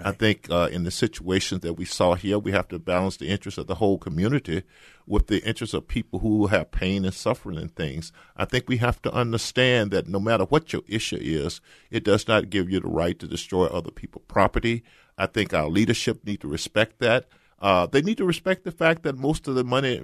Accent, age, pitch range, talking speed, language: American, 50-69, 95-120 Hz, 230 wpm, English